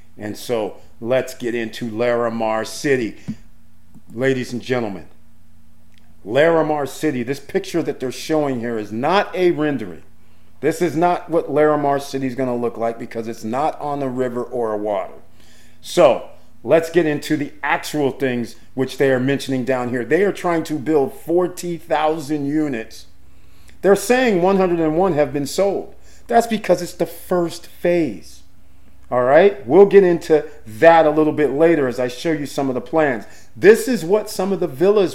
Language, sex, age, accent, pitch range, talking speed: English, male, 50-69, American, 115-165 Hz, 170 wpm